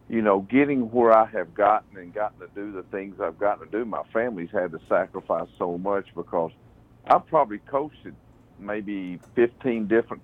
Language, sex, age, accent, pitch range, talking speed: English, male, 50-69, American, 95-115 Hz, 180 wpm